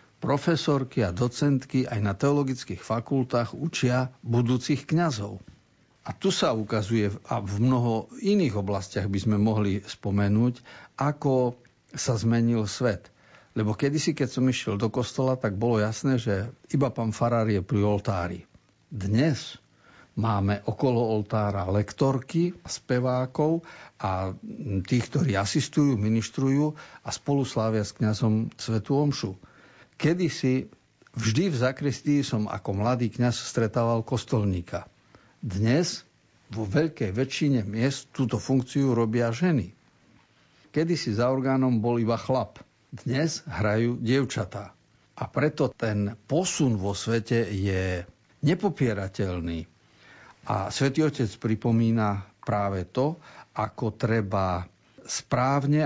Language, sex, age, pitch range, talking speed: Slovak, male, 50-69, 105-135 Hz, 115 wpm